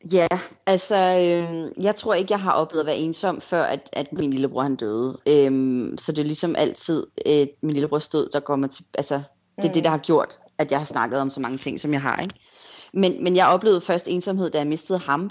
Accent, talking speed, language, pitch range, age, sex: Danish, 245 wpm, English, 145-180 Hz, 30-49, female